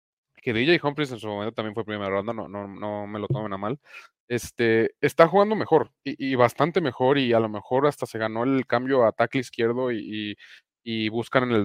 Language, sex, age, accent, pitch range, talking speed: English, male, 20-39, Mexican, 120-150 Hz, 225 wpm